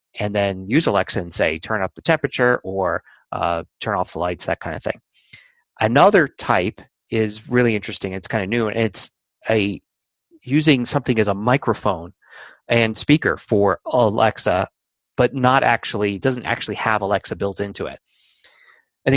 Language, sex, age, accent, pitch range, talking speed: English, male, 30-49, American, 105-135 Hz, 160 wpm